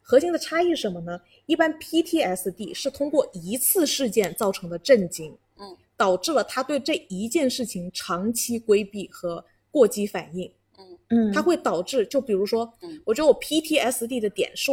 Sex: female